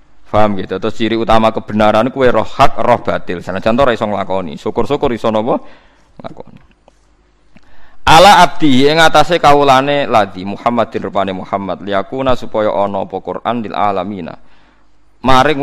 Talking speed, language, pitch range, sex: 135 wpm, Indonesian, 100-125 Hz, male